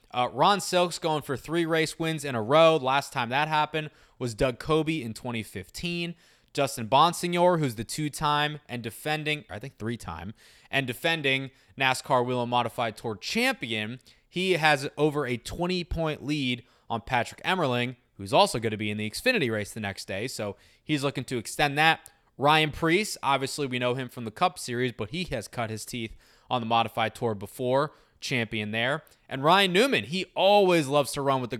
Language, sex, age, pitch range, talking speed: English, male, 20-39, 115-150 Hz, 185 wpm